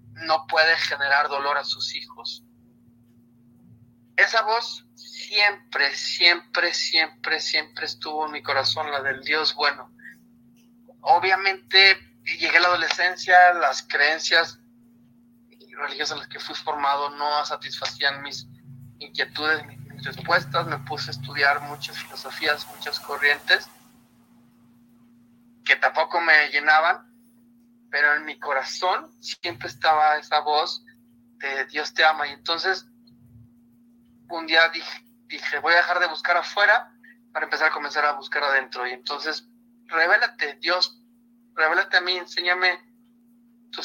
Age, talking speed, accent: 30-49, 125 wpm, Mexican